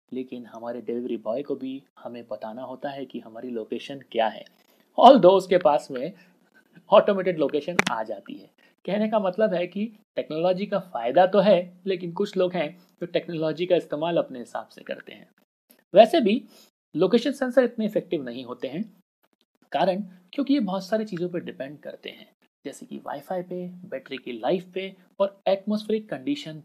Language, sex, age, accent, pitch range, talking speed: Hindi, male, 30-49, native, 145-215 Hz, 175 wpm